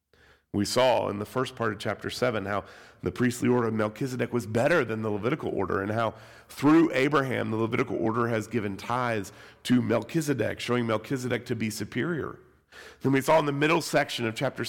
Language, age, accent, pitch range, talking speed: English, 40-59, American, 90-120 Hz, 190 wpm